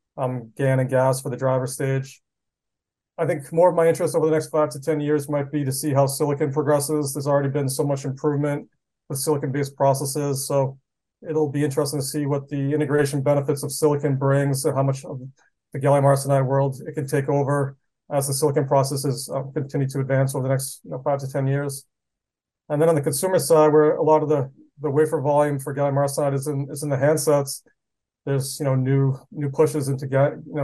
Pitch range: 135-150 Hz